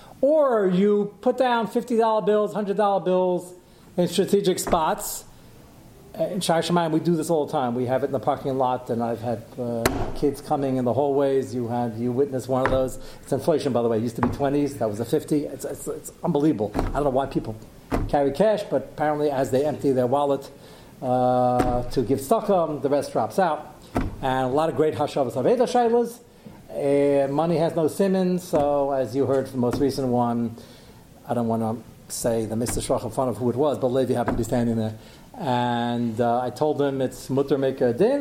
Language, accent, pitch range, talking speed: English, American, 130-200 Hz, 210 wpm